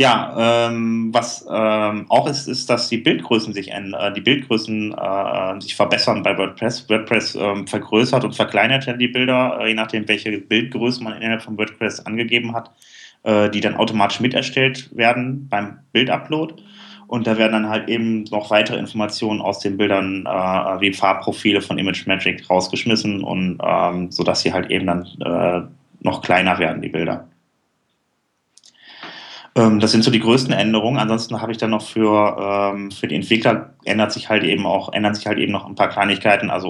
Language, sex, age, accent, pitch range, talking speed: German, male, 20-39, German, 100-115 Hz, 180 wpm